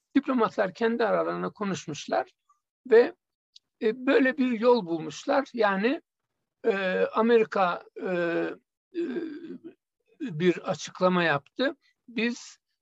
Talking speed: 90 wpm